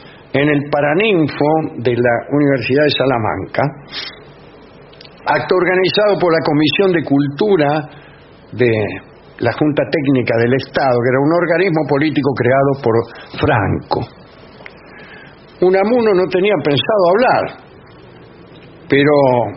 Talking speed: 105 wpm